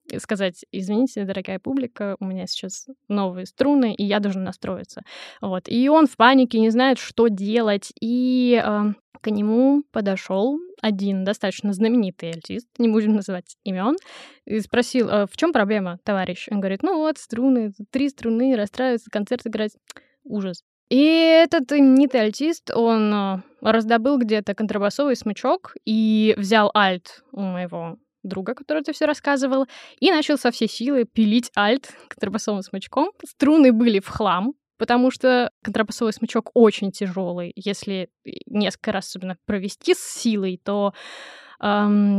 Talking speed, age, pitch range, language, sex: 140 wpm, 20-39, 200-255 Hz, Russian, female